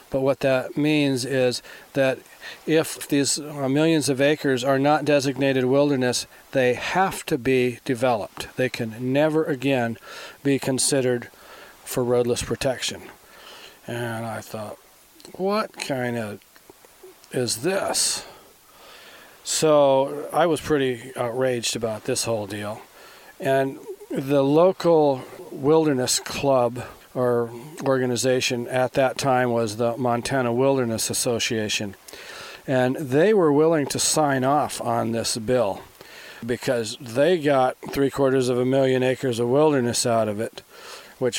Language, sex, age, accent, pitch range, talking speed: English, male, 40-59, American, 120-140 Hz, 125 wpm